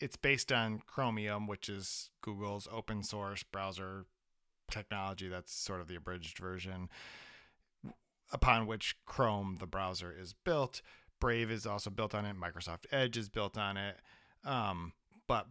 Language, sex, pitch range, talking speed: English, male, 95-120 Hz, 145 wpm